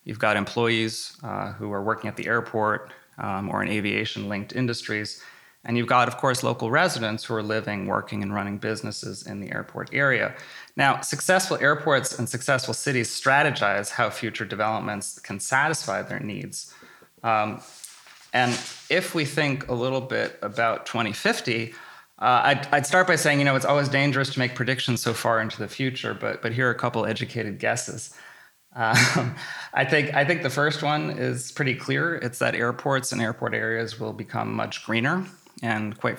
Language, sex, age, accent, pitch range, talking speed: Finnish, male, 20-39, American, 110-135 Hz, 175 wpm